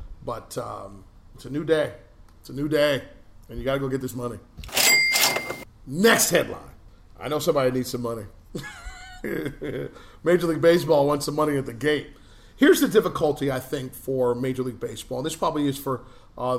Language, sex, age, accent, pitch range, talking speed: English, male, 40-59, American, 125-165 Hz, 180 wpm